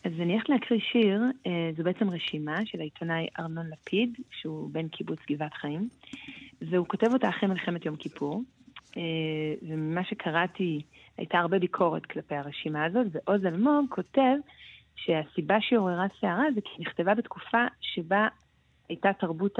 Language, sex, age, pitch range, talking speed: Hebrew, female, 30-49, 155-205 Hz, 140 wpm